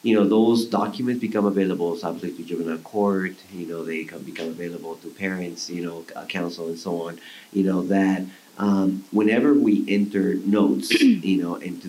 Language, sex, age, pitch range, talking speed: English, male, 30-49, 85-100 Hz, 170 wpm